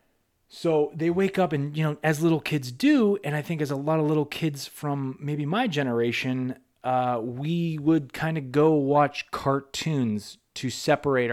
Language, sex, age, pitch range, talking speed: English, male, 20-39, 115-145 Hz, 180 wpm